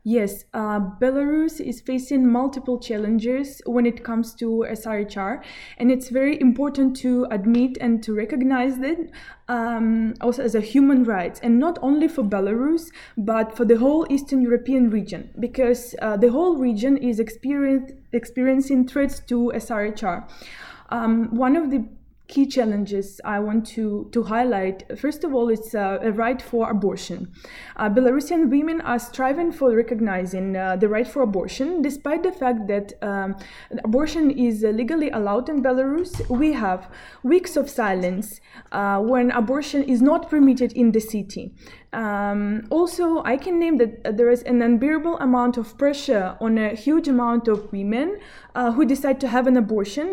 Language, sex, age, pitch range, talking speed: English, female, 20-39, 225-270 Hz, 160 wpm